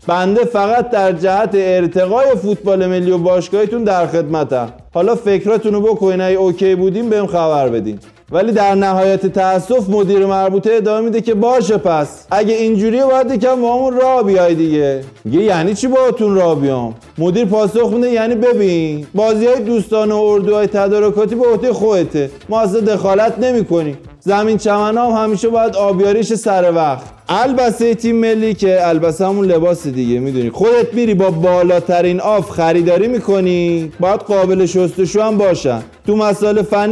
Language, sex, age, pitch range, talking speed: Persian, male, 20-39, 175-220 Hz, 160 wpm